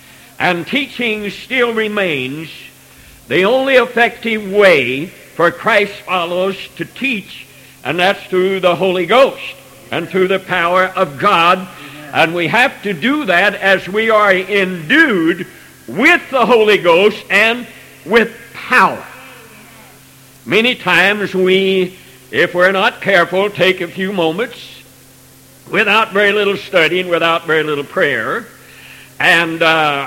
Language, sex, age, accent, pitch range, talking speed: English, male, 60-79, American, 180-225 Hz, 130 wpm